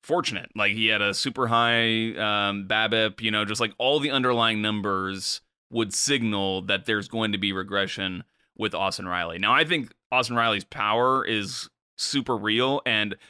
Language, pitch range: English, 105-125 Hz